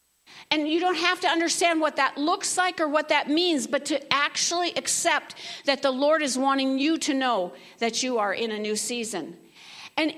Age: 50-69